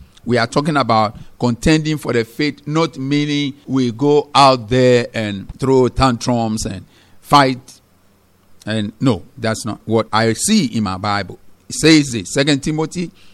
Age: 50-69